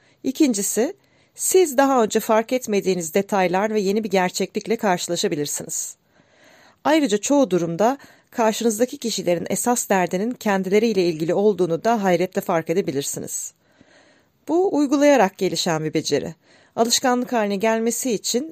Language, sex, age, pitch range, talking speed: Turkish, female, 40-59, 180-235 Hz, 115 wpm